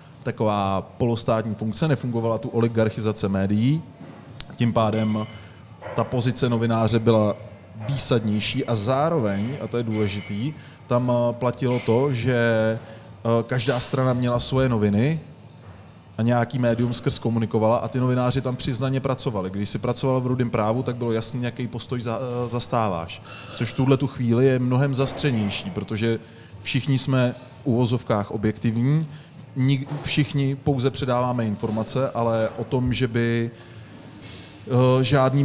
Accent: native